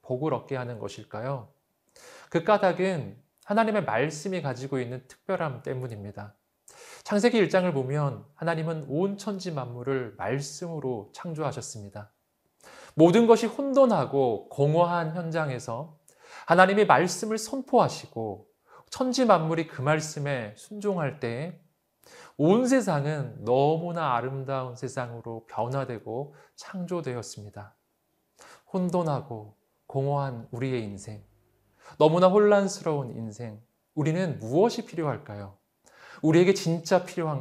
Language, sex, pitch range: Korean, male, 120-175 Hz